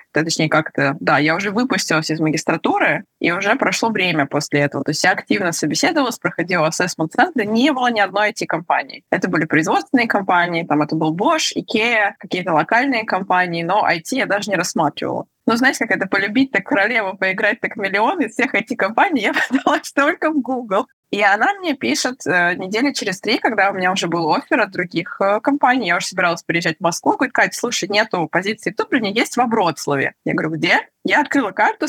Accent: native